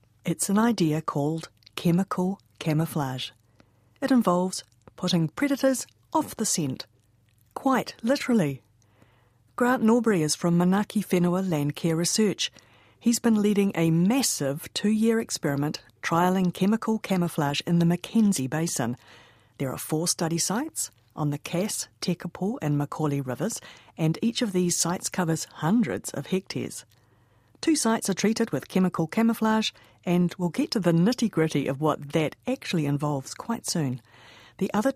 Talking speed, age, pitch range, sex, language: 135 wpm, 50-69, 145-195 Hz, female, English